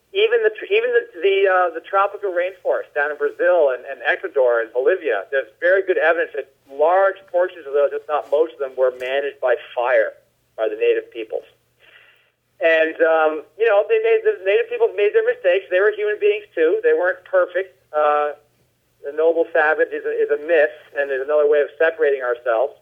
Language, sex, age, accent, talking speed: English, male, 40-59, American, 195 wpm